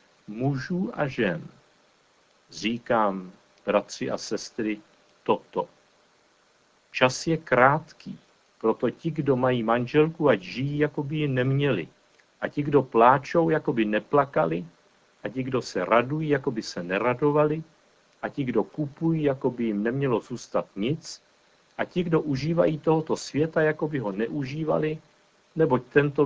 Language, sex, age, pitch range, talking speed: Czech, male, 60-79, 115-155 Hz, 135 wpm